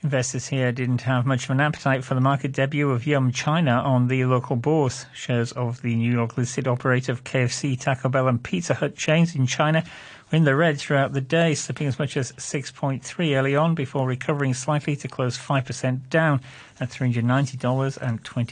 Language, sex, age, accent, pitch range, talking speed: English, male, 40-59, British, 125-150 Hz, 190 wpm